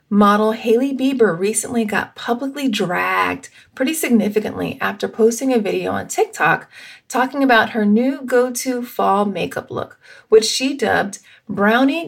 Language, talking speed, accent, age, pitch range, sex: English, 135 wpm, American, 30-49, 205-260 Hz, female